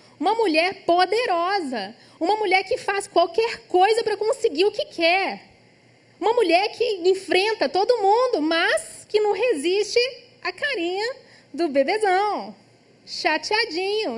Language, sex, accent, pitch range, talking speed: Portuguese, female, Brazilian, 260-385 Hz, 125 wpm